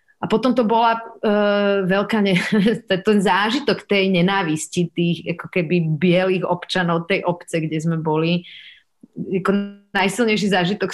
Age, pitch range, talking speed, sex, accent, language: 30-49, 160-210 Hz, 130 wpm, female, native, Czech